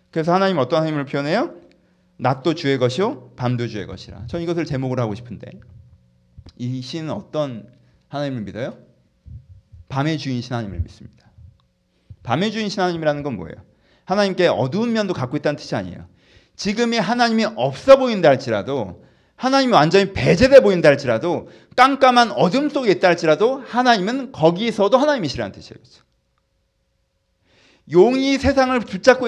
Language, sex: Korean, male